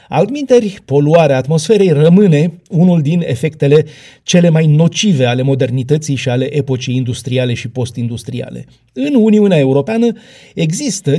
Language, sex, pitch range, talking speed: Romanian, male, 135-205 Hz, 120 wpm